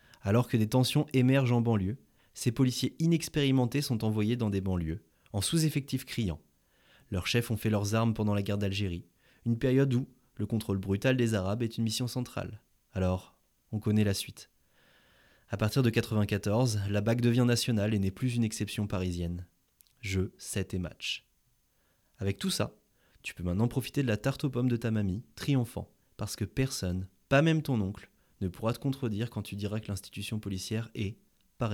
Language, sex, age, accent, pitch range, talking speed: French, male, 20-39, French, 100-125 Hz, 185 wpm